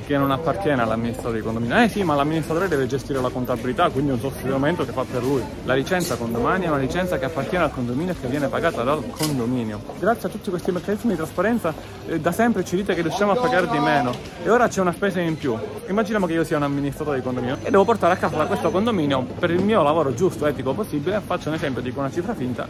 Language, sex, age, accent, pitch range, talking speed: Italian, male, 30-49, native, 135-185 Hz, 245 wpm